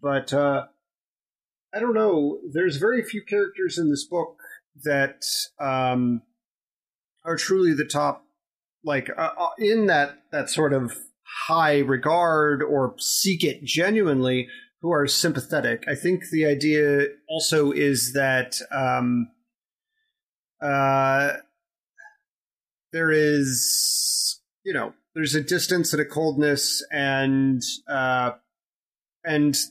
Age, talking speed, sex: 30-49, 115 wpm, male